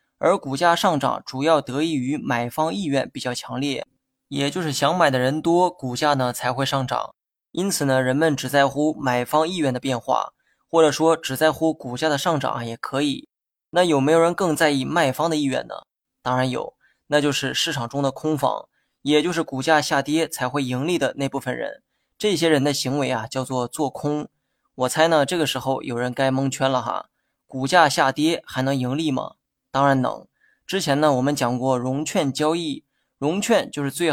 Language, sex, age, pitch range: Chinese, male, 20-39, 130-160 Hz